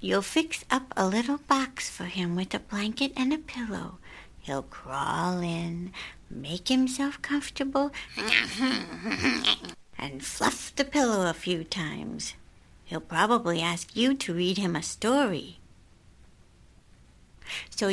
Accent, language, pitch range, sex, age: American, Chinese, 175-265 Hz, female, 60-79